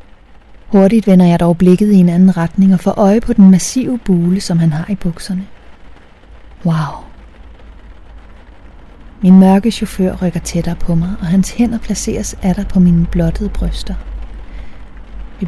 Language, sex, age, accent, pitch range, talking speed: Danish, female, 30-49, native, 160-195 Hz, 150 wpm